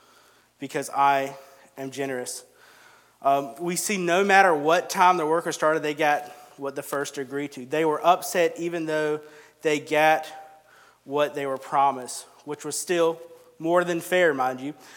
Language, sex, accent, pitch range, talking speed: English, male, American, 145-180 Hz, 160 wpm